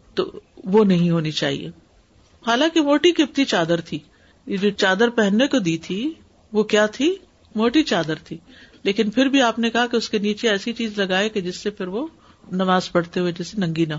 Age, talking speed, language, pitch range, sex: 50-69, 195 wpm, Urdu, 180-240 Hz, female